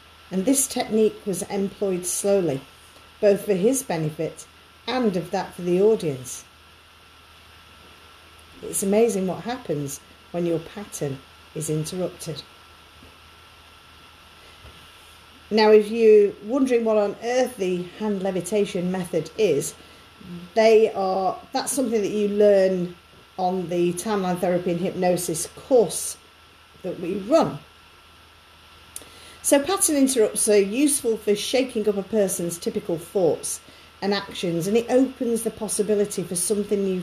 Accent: British